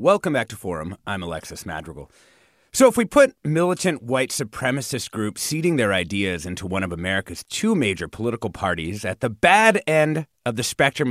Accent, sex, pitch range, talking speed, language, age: American, male, 100-160 Hz, 180 wpm, English, 30-49